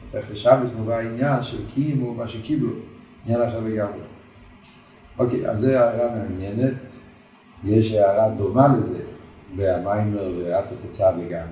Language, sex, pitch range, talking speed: Hebrew, male, 100-125 Hz, 125 wpm